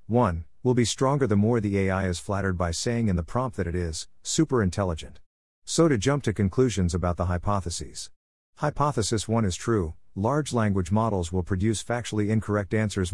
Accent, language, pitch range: American, English, 90-115 Hz